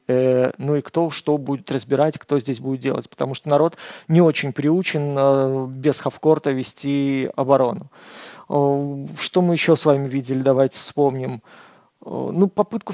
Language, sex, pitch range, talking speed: Russian, male, 140-165 Hz, 140 wpm